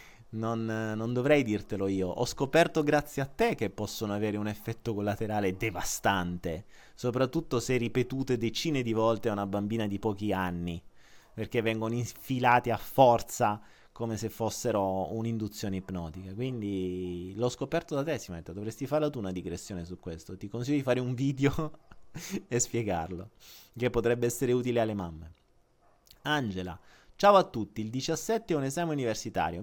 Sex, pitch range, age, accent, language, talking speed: male, 100-130 Hz, 30-49, native, Italian, 155 wpm